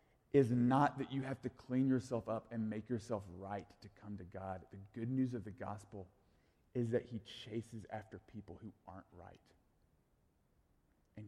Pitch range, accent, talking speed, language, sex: 95-130 Hz, American, 175 wpm, English, male